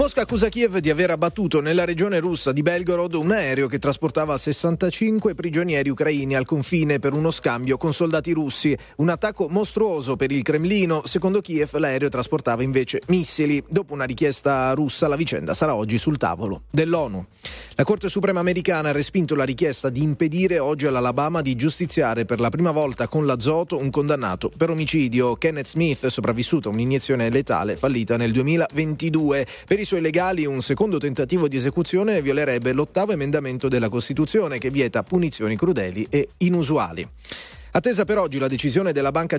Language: Italian